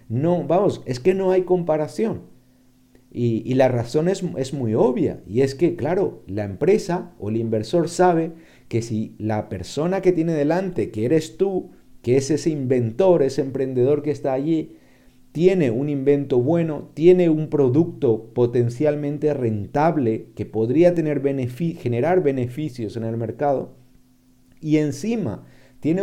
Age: 50-69